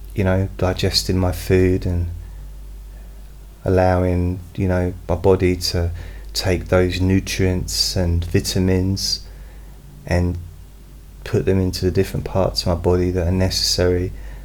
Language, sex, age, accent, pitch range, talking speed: English, male, 20-39, British, 80-95 Hz, 125 wpm